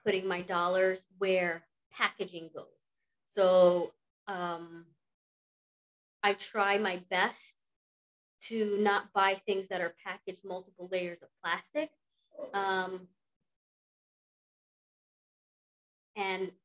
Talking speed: 90 wpm